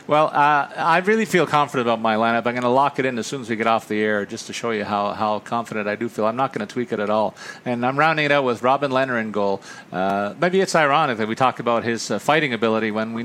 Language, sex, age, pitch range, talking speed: English, male, 40-59, 110-135 Hz, 295 wpm